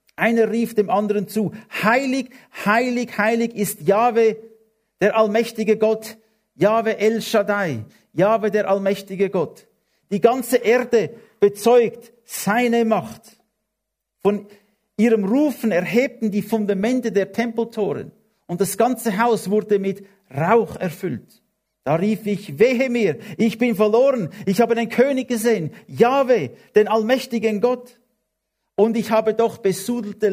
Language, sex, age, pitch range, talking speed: English, male, 50-69, 190-225 Hz, 125 wpm